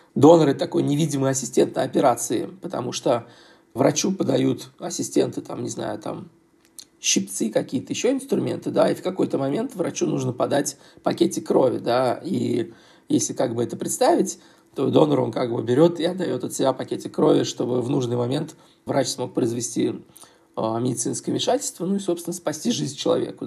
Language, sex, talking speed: Russian, male, 165 wpm